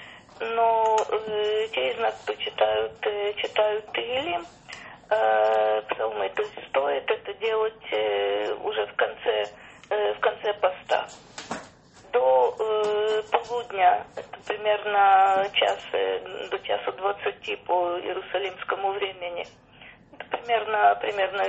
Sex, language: female, Russian